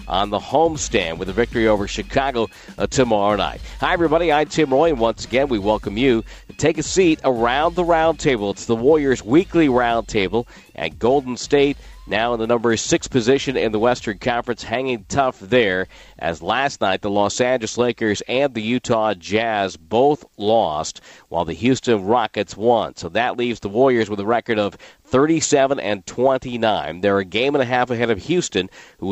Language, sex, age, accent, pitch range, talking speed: English, male, 50-69, American, 100-130 Hz, 190 wpm